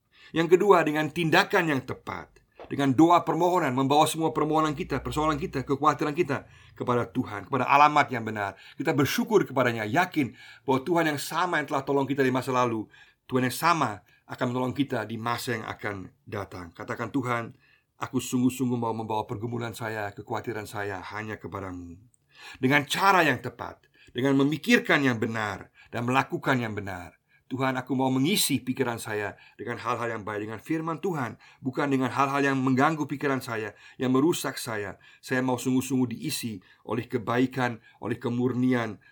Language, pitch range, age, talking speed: Indonesian, 115-140 Hz, 50-69, 160 wpm